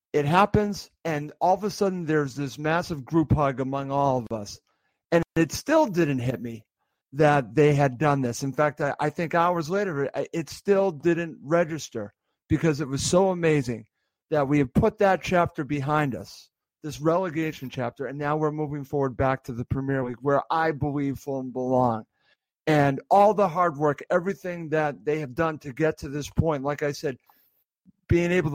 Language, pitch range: English, 140-170 Hz